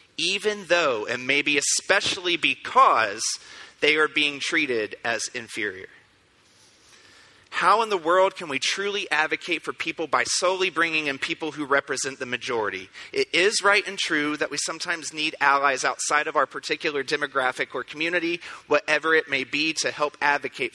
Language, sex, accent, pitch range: English, male, American, 140-180 Hz